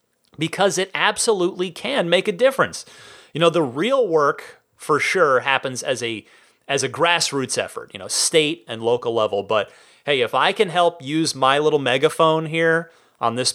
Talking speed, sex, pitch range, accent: 175 wpm, male, 125-210 Hz, American